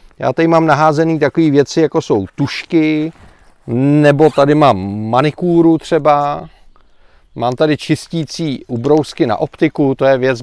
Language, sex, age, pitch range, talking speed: Czech, male, 40-59, 130-170 Hz, 130 wpm